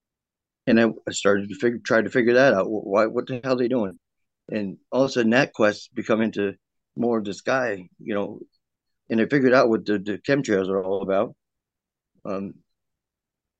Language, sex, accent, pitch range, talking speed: English, male, American, 100-115 Hz, 195 wpm